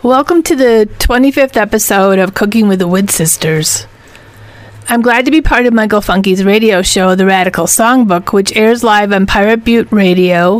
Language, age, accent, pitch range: English, 40-59, American, 185-225 Hz